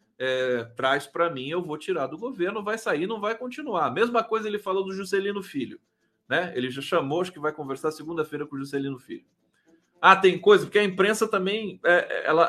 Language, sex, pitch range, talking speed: Portuguese, male, 160-245 Hz, 205 wpm